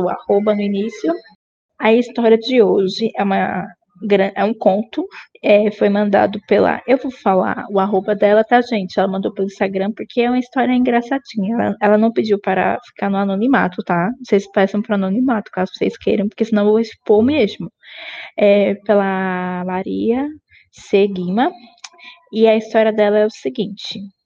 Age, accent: 10-29, Brazilian